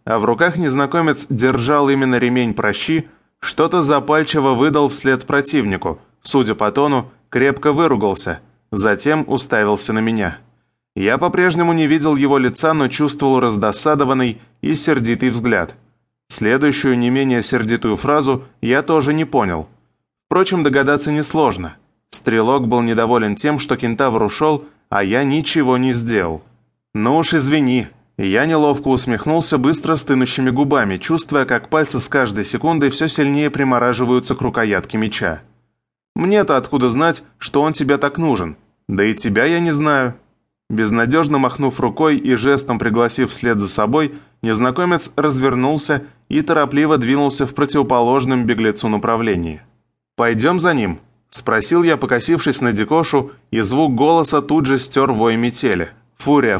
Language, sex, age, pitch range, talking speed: English, male, 20-39, 120-150 Hz, 135 wpm